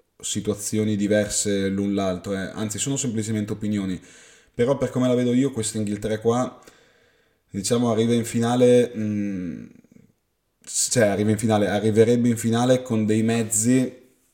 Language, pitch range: Italian, 100-120 Hz